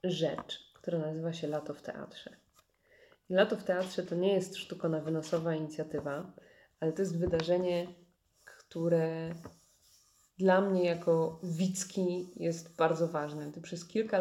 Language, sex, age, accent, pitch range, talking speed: Polish, female, 20-39, native, 165-190 Hz, 135 wpm